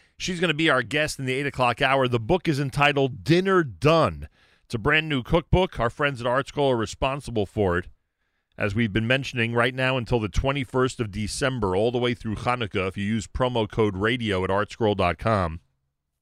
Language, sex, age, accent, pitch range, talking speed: English, male, 40-59, American, 100-135 Hz, 200 wpm